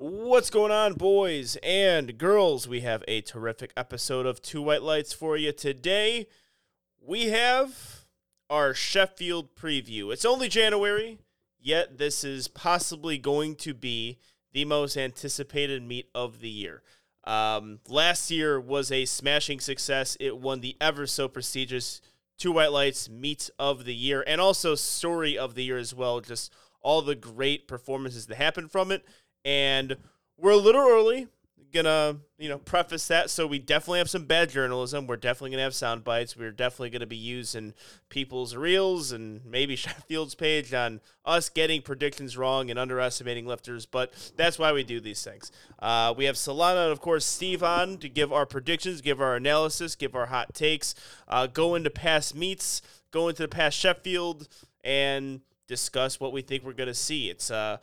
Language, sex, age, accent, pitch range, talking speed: English, male, 30-49, American, 125-165 Hz, 170 wpm